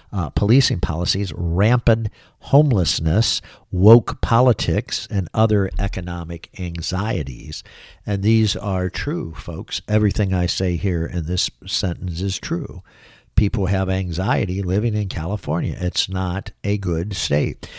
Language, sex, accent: English, male, American